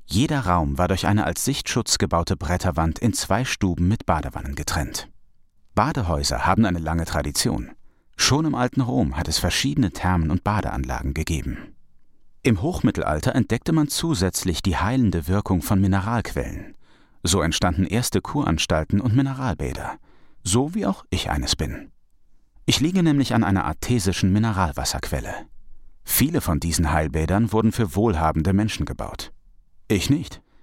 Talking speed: 140 wpm